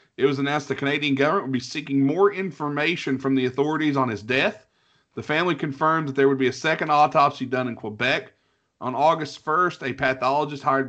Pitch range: 130-150 Hz